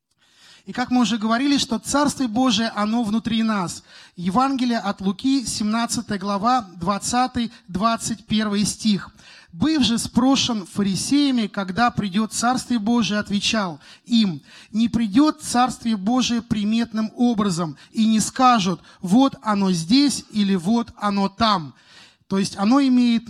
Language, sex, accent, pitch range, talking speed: Russian, male, native, 200-245 Hz, 125 wpm